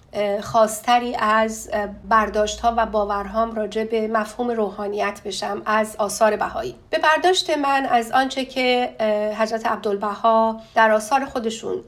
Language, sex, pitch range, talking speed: Persian, female, 220-265 Hz, 125 wpm